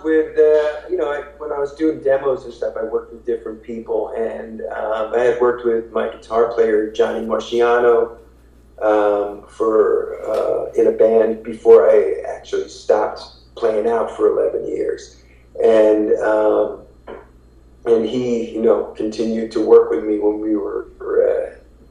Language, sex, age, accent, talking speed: English, male, 40-59, American, 160 wpm